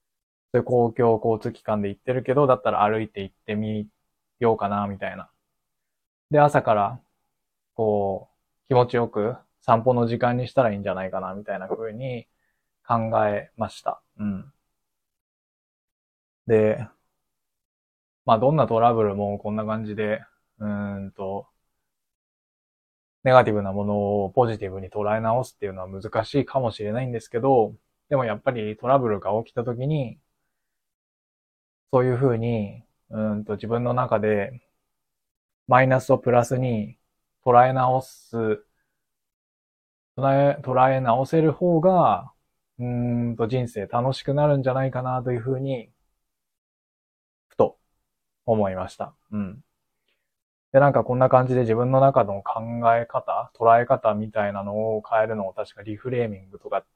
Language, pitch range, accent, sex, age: Japanese, 100-125 Hz, native, male, 20-39